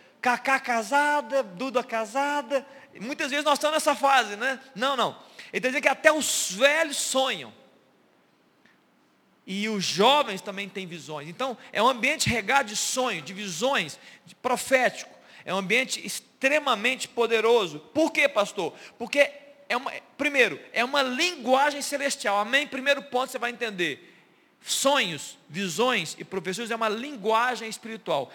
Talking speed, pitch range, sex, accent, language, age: 140 wpm, 210-275 Hz, male, Brazilian, Portuguese, 40-59